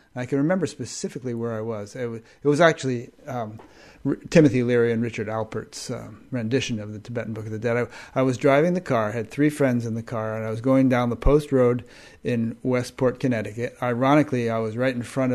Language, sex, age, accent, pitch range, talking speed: English, male, 30-49, American, 115-135 Hz, 215 wpm